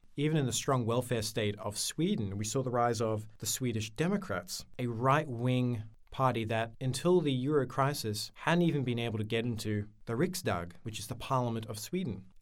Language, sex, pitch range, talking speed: English, male, 105-135 Hz, 190 wpm